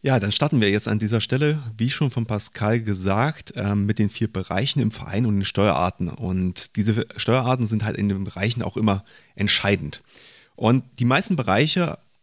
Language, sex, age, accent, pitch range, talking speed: German, male, 30-49, German, 100-140 Hz, 180 wpm